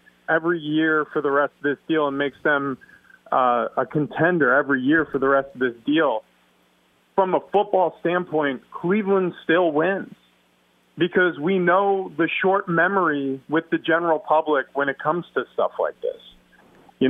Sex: male